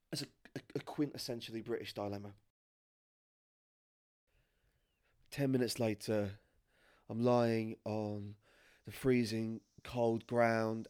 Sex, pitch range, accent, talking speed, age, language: male, 105-125 Hz, British, 75 wpm, 20-39, English